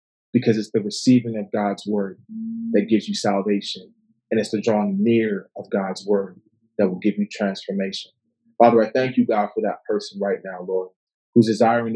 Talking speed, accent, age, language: 185 wpm, American, 30-49, English